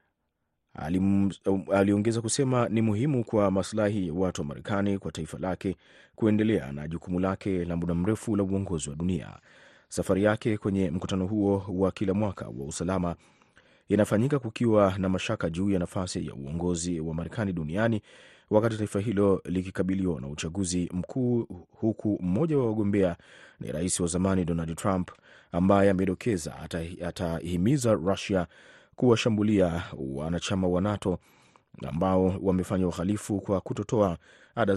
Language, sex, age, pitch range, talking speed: Swahili, male, 30-49, 85-105 Hz, 135 wpm